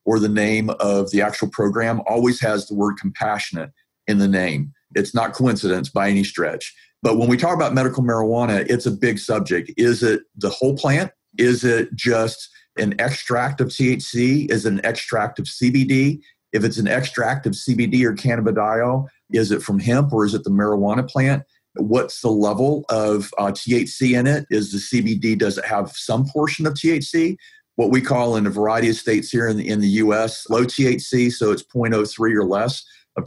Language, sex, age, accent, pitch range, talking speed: English, male, 50-69, American, 105-130 Hz, 195 wpm